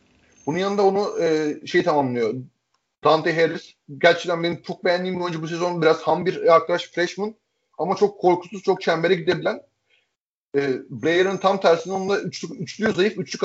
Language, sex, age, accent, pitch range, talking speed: Turkish, male, 30-49, native, 150-185 Hz, 155 wpm